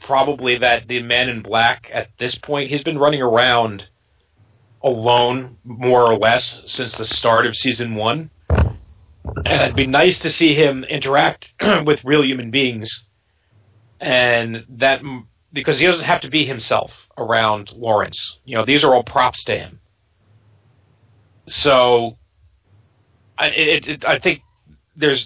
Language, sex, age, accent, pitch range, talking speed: English, male, 40-59, American, 110-145 Hz, 145 wpm